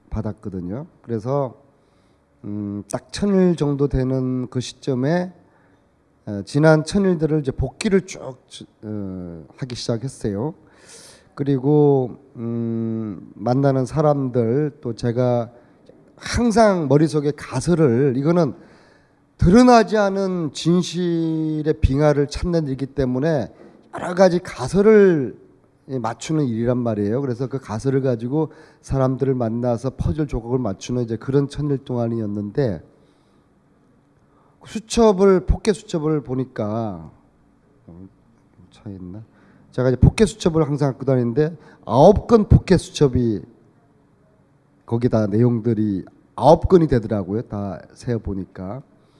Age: 30-49